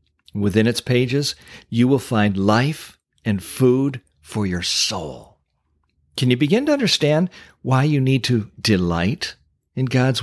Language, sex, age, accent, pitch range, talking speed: English, male, 50-69, American, 105-140 Hz, 140 wpm